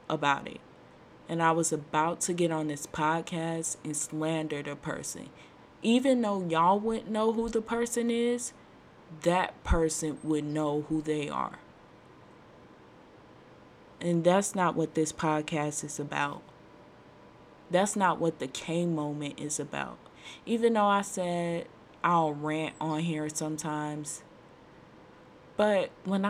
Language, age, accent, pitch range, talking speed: English, 20-39, American, 150-180 Hz, 130 wpm